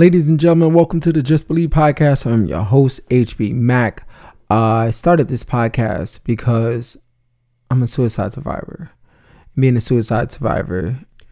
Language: English